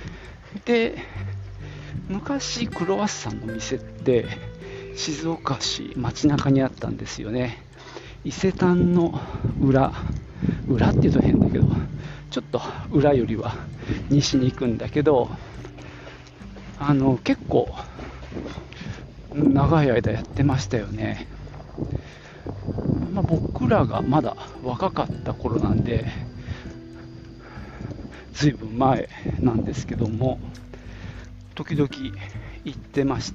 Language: Japanese